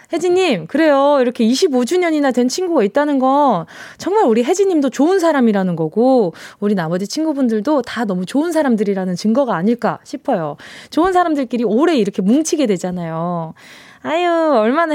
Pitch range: 205-295 Hz